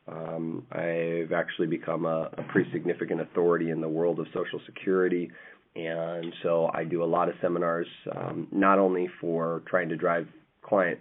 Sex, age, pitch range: male, 30-49, 80-95 Hz